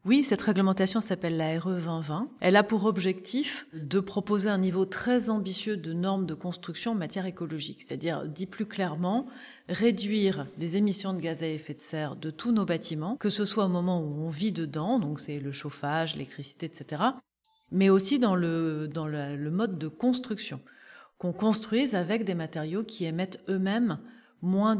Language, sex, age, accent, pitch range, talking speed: French, female, 30-49, French, 160-215 Hz, 175 wpm